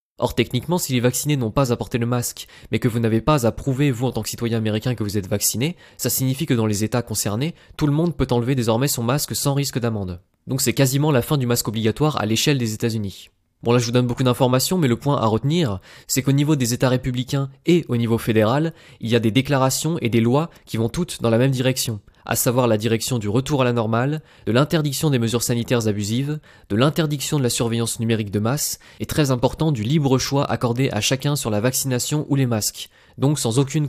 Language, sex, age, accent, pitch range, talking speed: English, male, 20-39, French, 110-140 Hz, 240 wpm